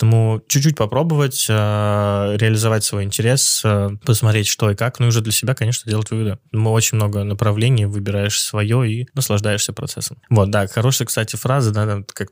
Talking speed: 180 wpm